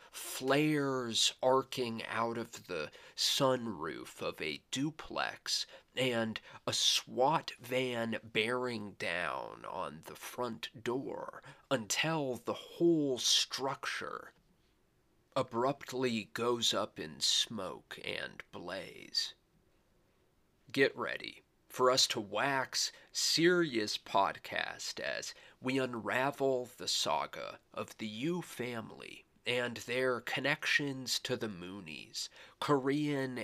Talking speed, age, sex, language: 95 wpm, 30-49, male, English